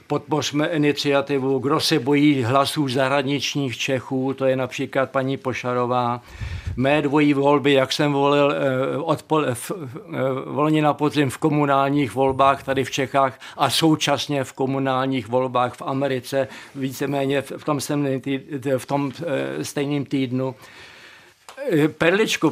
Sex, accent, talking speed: male, native, 110 wpm